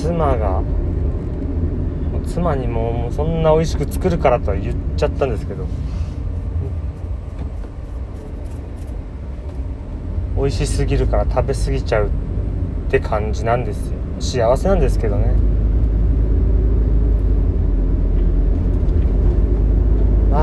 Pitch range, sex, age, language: 75-90 Hz, male, 30-49, Japanese